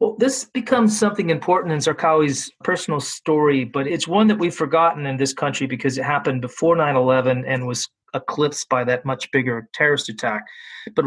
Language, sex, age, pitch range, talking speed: English, male, 30-49, 125-150 Hz, 180 wpm